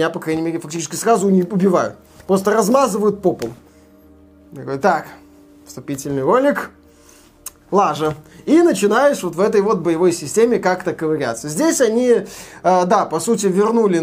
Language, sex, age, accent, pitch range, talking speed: Russian, male, 20-39, native, 160-215 Hz, 135 wpm